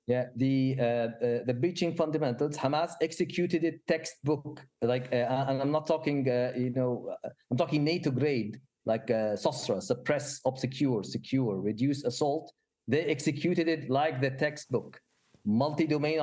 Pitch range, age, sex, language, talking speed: 120-155 Hz, 40-59, male, English, 145 wpm